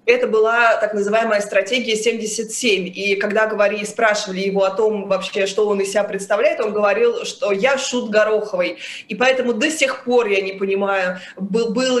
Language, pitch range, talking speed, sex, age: Russian, 195-230 Hz, 170 wpm, female, 20-39